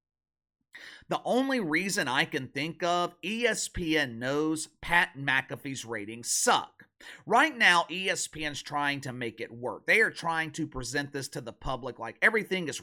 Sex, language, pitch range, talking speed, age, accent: male, English, 135-195 Hz, 155 wpm, 40-59, American